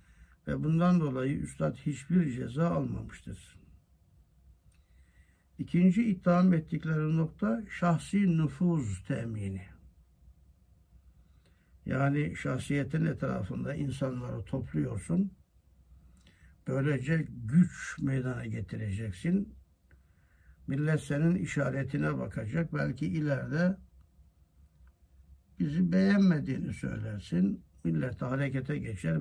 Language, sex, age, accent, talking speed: Turkish, male, 60-79, native, 70 wpm